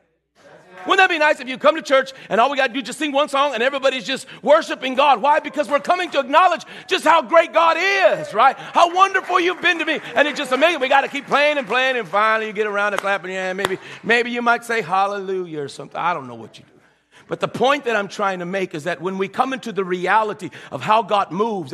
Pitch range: 150-245 Hz